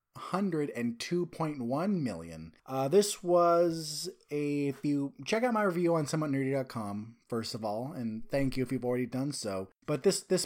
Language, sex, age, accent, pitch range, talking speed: English, male, 30-49, American, 125-165 Hz, 155 wpm